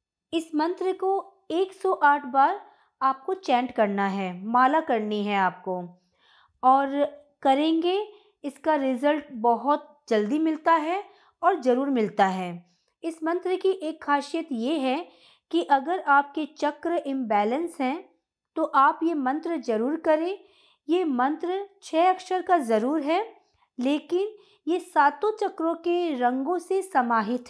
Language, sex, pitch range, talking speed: Hindi, female, 255-355 Hz, 135 wpm